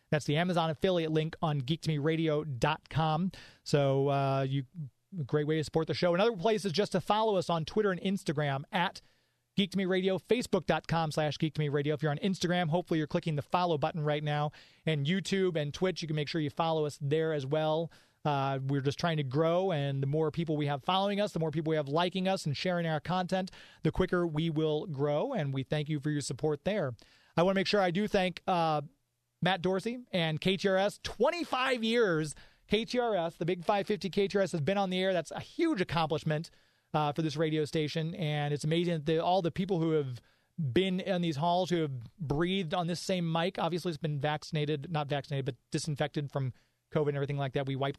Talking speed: 215 wpm